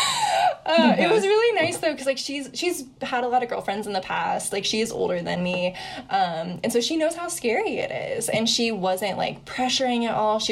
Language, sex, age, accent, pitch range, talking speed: English, female, 10-29, American, 185-255 Hz, 235 wpm